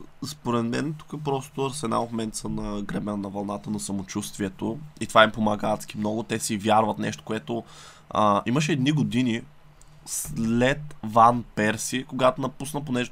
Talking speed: 165 wpm